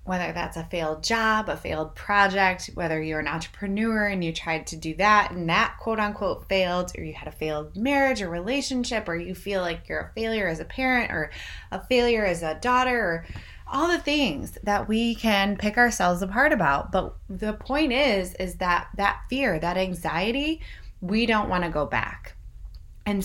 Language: English